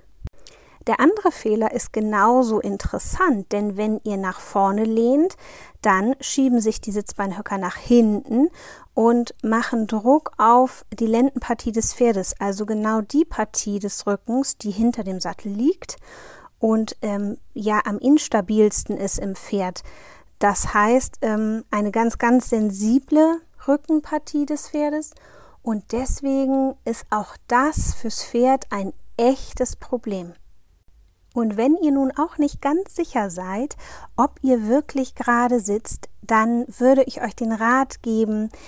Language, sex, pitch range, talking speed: German, female, 210-265 Hz, 135 wpm